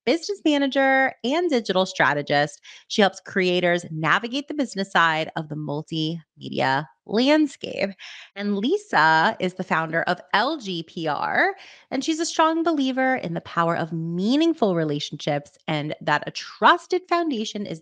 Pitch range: 165-260 Hz